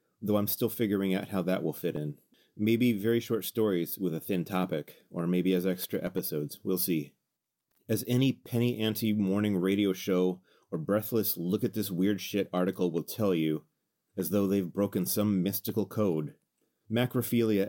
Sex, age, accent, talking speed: male, 30-49, American, 155 wpm